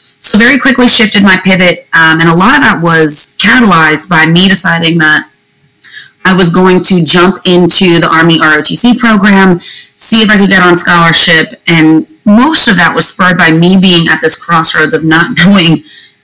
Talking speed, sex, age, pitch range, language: 185 wpm, female, 30-49, 165-210 Hz, English